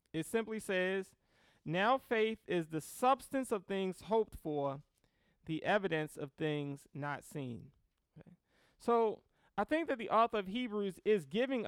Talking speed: 150 wpm